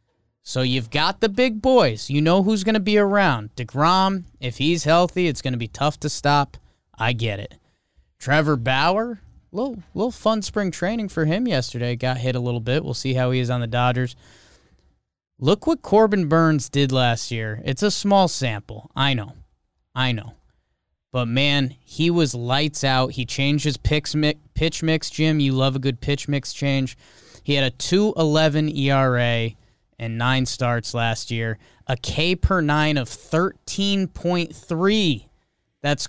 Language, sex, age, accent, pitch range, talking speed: English, male, 20-39, American, 125-170 Hz, 170 wpm